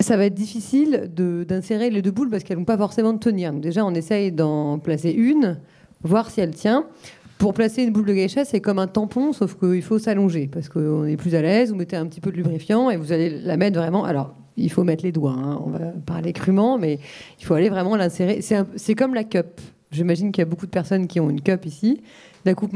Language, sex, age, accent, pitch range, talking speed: French, female, 30-49, French, 165-210 Hz, 255 wpm